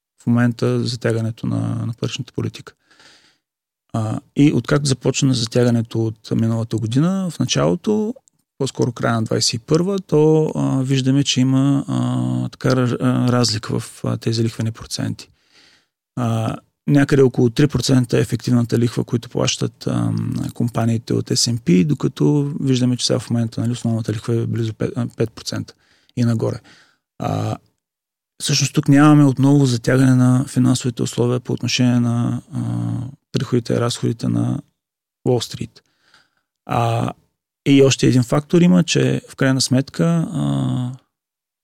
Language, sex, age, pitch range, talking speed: Bulgarian, male, 30-49, 115-135 Hz, 130 wpm